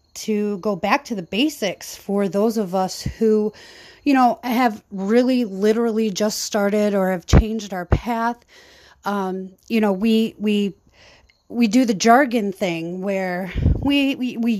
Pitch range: 190-240 Hz